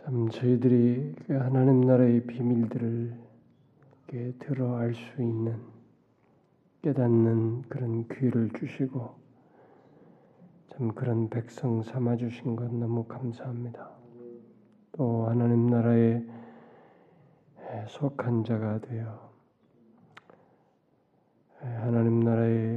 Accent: native